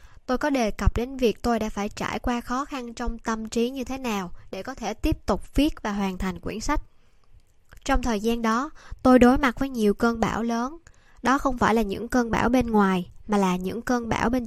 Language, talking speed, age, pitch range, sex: Vietnamese, 235 wpm, 10-29, 200-250 Hz, male